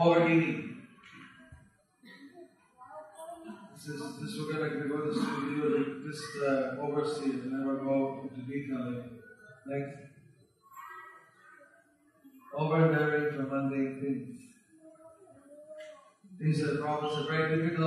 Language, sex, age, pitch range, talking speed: English, male, 40-59, 150-190 Hz, 100 wpm